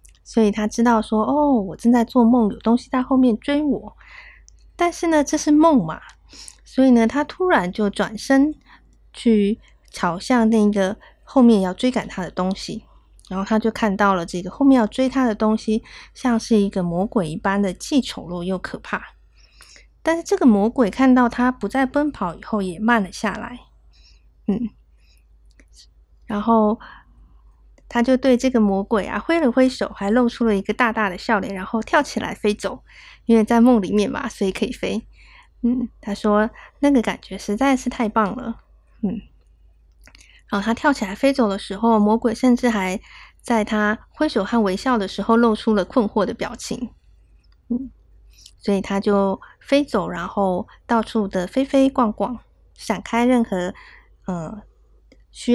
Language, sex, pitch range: Chinese, female, 195-250 Hz